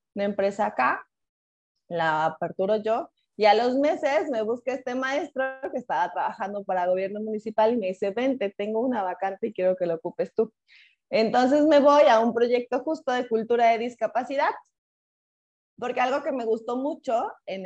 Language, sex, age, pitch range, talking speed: Spanish, female, 20-39, 195-250 Hz, 175 wpm